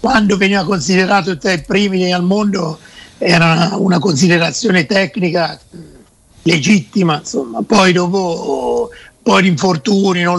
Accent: native